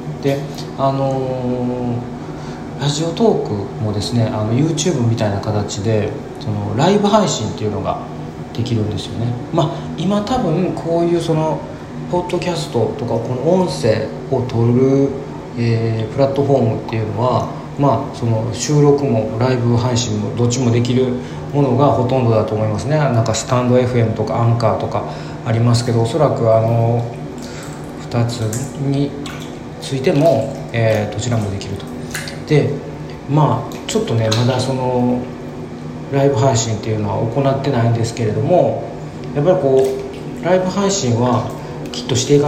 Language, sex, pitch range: Japanese, male, 110-140 Hz